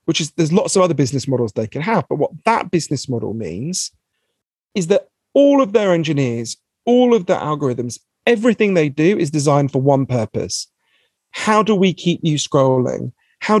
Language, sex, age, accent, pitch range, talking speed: English, male, 40-59, British, 135-195 Hz, 185 wpm